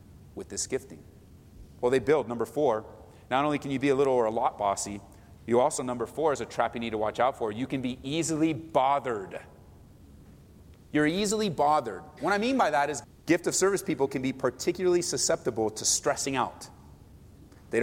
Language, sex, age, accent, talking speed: English, male, 30-49, American, 195 wpm